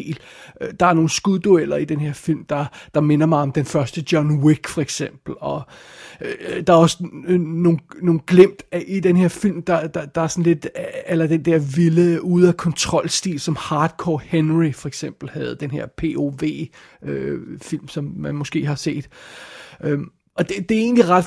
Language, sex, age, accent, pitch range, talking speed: Danish, male, 30-49, native, 150-185 Hz, 185 wpm